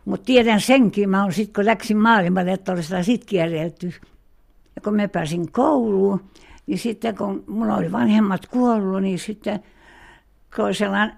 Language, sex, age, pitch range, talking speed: Finnish, female, 60-79, 180-220 Hz, 130 wpm